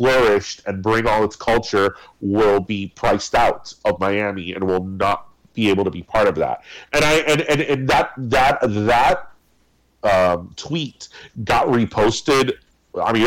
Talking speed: 165 wpm